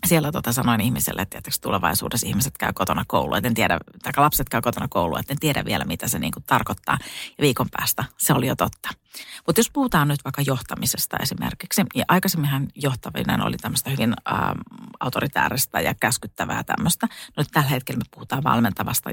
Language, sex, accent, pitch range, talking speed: Finnish, female, native, 120-150 Hz, 165 wpm